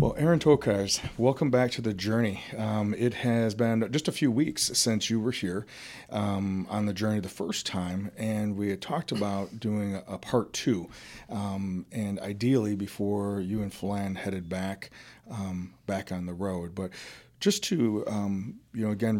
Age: 40-59